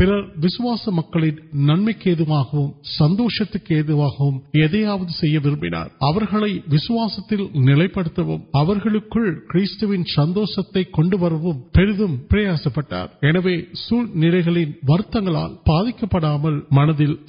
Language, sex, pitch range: Urdu, male, 150-195 Hz